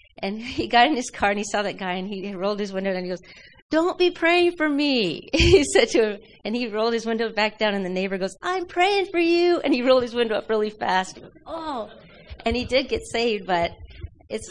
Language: English